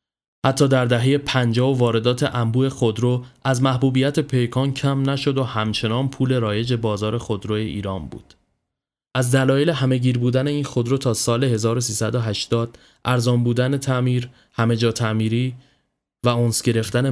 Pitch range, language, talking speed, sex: 110-130 Hz, Persian, 145 wpm, male